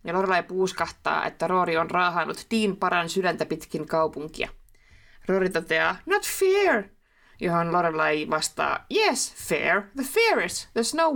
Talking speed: 135 wpm